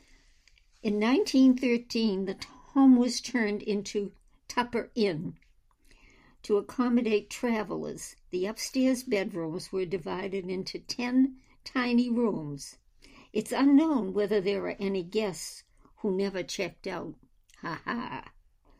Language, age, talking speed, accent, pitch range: English, 60-79, 110 wpm, American, 190-250 Hz